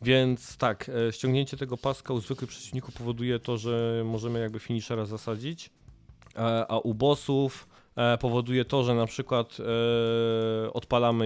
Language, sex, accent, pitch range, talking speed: Polish, male, native, 110-125 Hz, 130 wpm